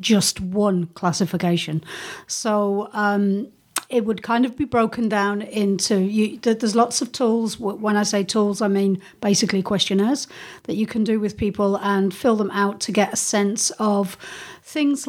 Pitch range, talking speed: 195-225 Hz, 165 wpm